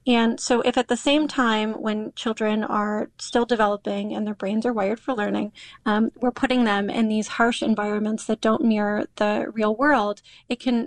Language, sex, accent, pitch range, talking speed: English, female, American, 215-245 Hz, 195 wpm